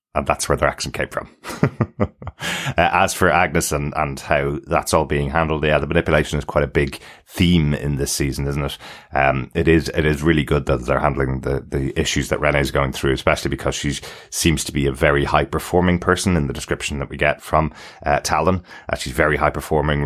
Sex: male